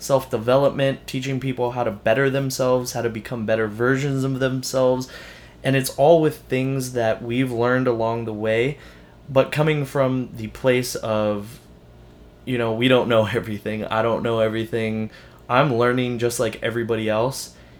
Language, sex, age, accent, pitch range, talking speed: English, male, 20-39, American, 105-125 Hz, 160 wpm